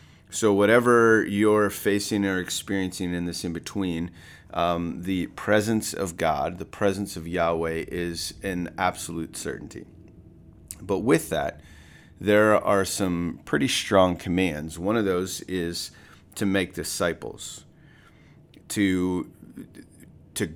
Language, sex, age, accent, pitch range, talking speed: English, male, 30-49, American, 85-100 Hz, 120 wpm